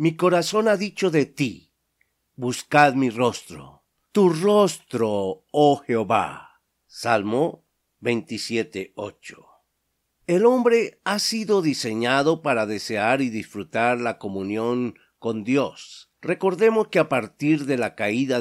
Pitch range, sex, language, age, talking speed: 115-170 Hz, male, Spanish, 50-69, 115 wpm